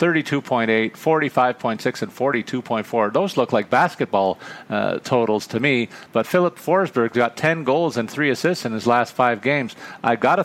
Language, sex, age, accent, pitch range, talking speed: English, male, 40-59, American, 110-130 Hz, 155 wpm